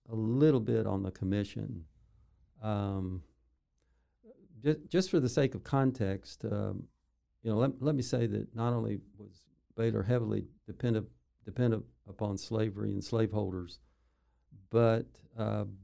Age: 50-69